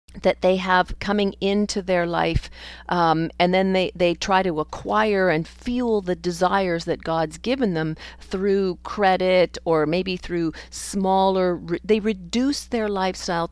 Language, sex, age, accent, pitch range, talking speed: English, female, 40-59, American, 160-205 Hz, 150 wpm